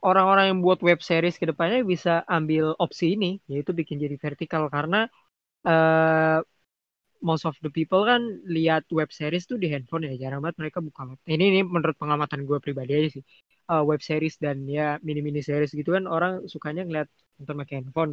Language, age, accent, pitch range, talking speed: Indonesian, 20-39, native, 150-170 Hz, 190 wpm